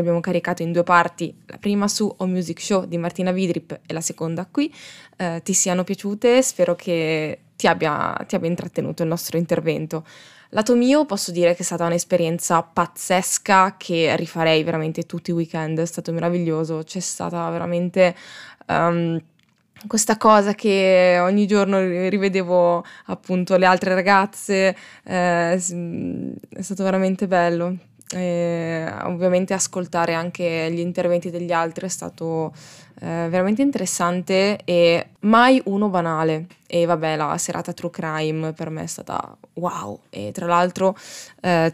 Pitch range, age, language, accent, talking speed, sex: 165-190 Hz, 20-39, Italian, native, 145 wpm, female